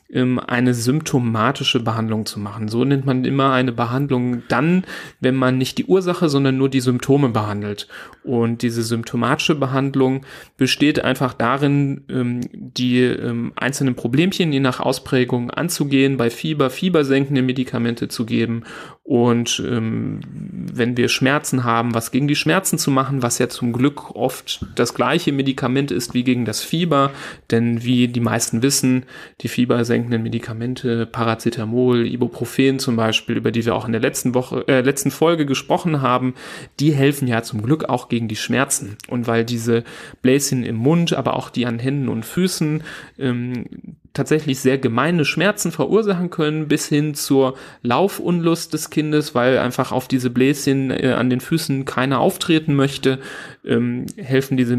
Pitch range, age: 120-140 Hz, 30-49